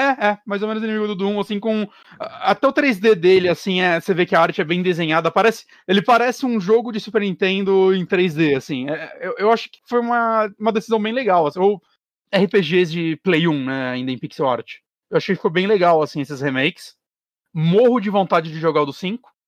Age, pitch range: 30-49, 160-225 Hz